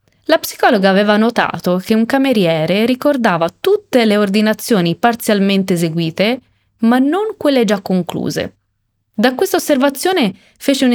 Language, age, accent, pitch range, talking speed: Italian, 20-39, native, 185-260 Hz, 125 wpm